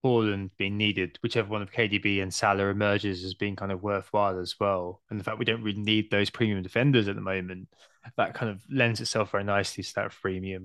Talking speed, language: 225 wpm, English